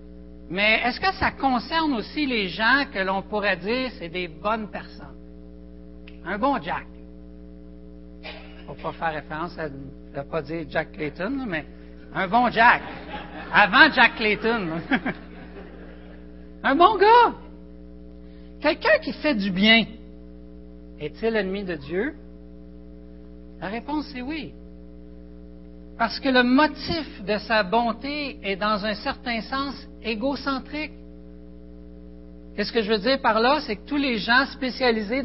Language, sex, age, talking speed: French, male, 60-79, 135 wpm